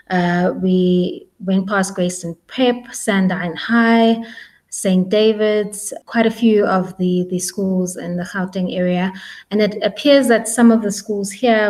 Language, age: English, 20-39